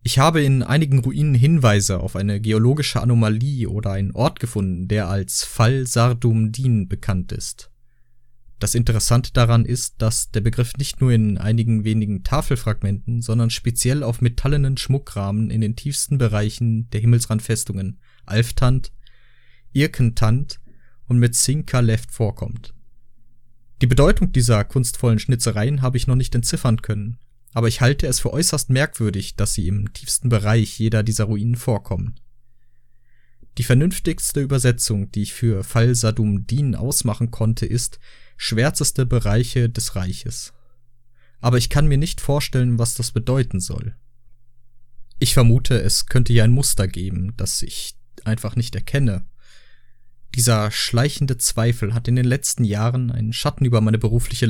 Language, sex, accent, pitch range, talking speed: German, male, German, 110-125 Hz, 140 wpm